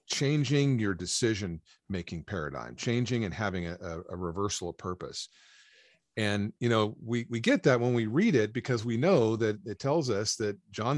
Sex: male